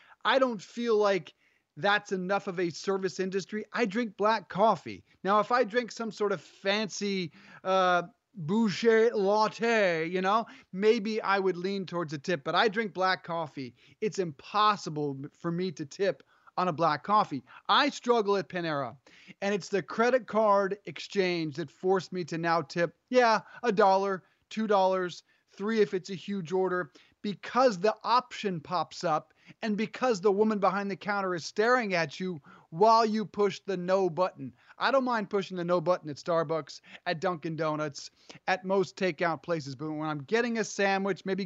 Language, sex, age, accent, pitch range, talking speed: English, male, 30-49, American, 175-215 Hz, 175 wpm